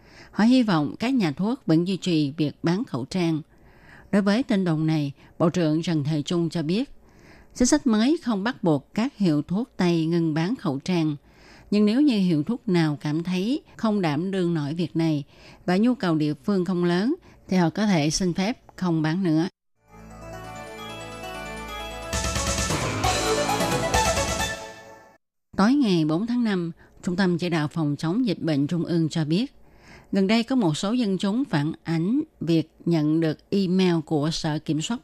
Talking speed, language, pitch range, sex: 175 wpm, Vietnamese, 155-195 Hz, female